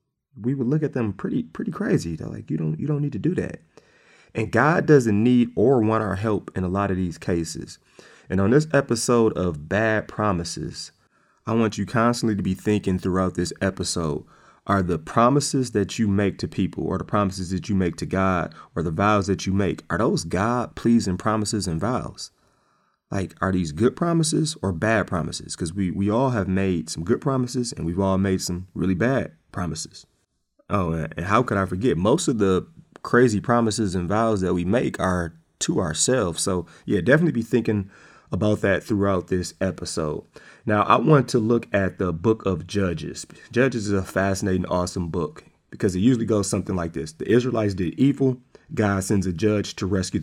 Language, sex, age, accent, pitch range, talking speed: English, male, 30-49, American, 90-115 Hz, 195 wpm